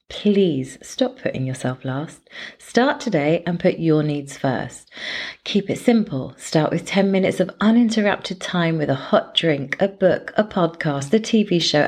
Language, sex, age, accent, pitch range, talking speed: English, female, 30-49, British, 150-205 Hz, 165 wpm